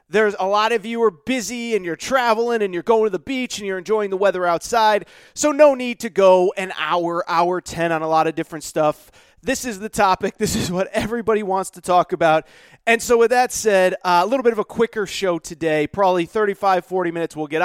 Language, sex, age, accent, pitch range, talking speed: English, male, 30-49, American, 180-235 Hz, 235 wpm